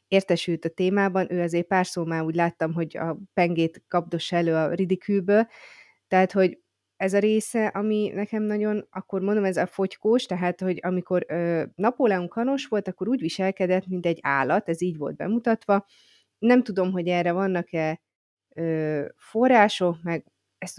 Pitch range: 165-200 Hz